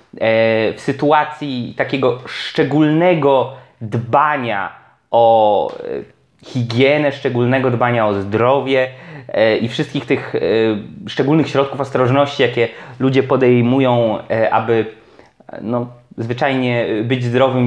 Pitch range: 120-155 Hz